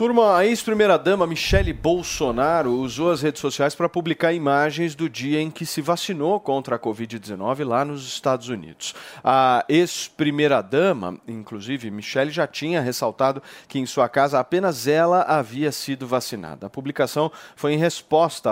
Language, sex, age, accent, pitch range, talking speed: Portuguese, male, 40-59, Brazilian, 125-155 Hz, 150 wpm